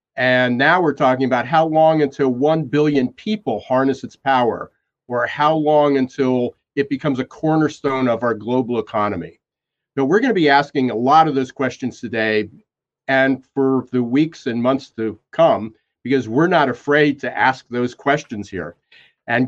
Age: 50-69